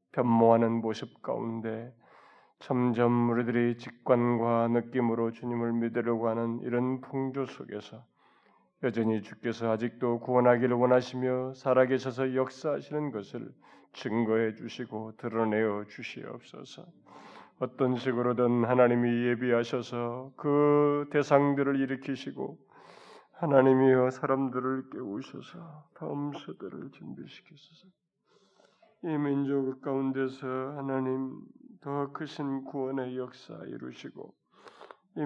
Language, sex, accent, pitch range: Korean, male, native, 125-135 Hz